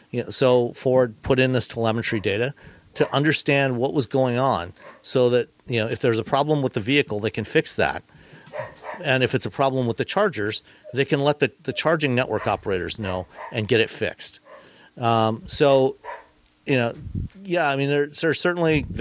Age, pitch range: 40-59, 110-140 Hz